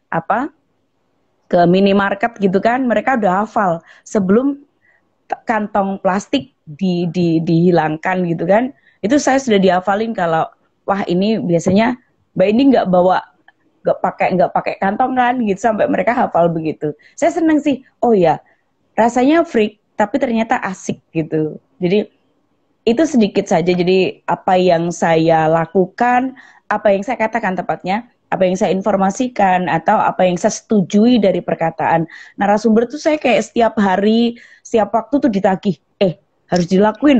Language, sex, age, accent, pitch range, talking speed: Indonesian, female, 20-39, native, 175-235 Hz, 140 wpm